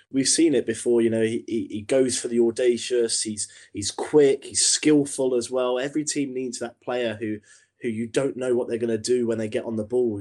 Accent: British